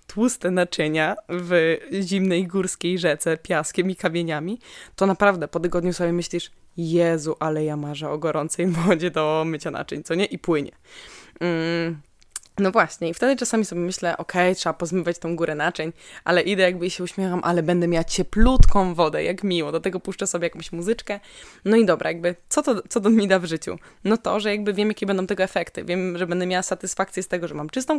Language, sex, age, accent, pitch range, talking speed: Polish, female, 20-39, native, 175-205 Hz, 200 wpm